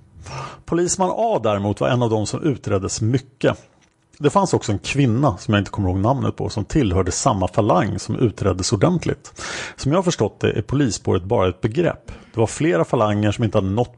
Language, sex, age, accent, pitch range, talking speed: Swedish, male, 30-49, Norwegian, 105-135 Hz, 200 wpm